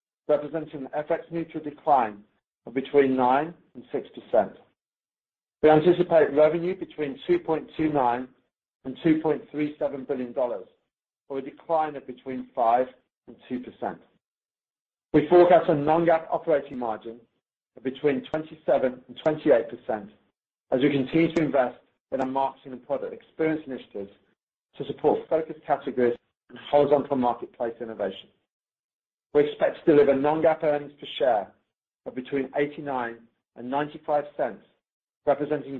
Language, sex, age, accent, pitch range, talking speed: English, male, 40-59, British, 130-160 Hz, 120 wpm